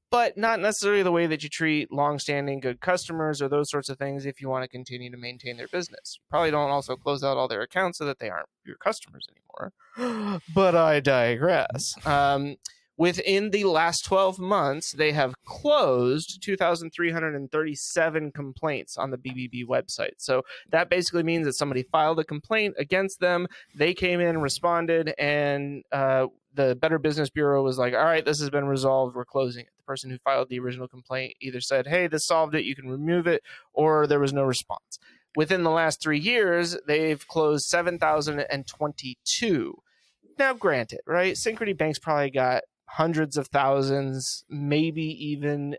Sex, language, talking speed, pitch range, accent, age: male, English, 170 wpm, 135-170 Hz, American, 30-49